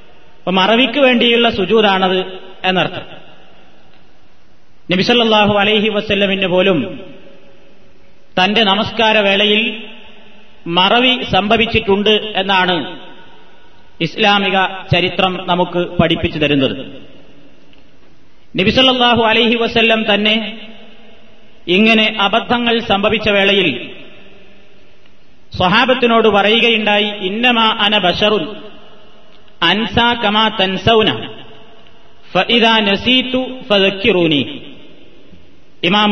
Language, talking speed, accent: Malayalam, 55 wpm, native